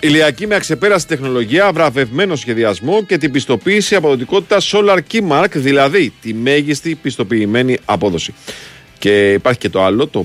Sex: male